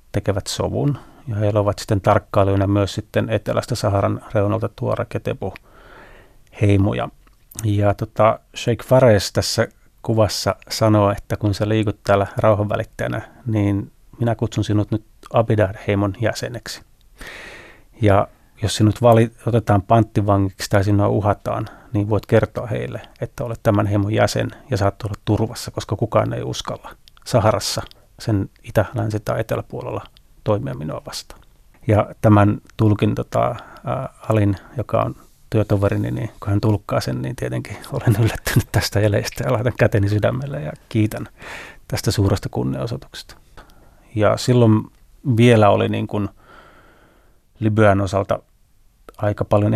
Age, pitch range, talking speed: 30-49, 100-115 Hz, 130 wpm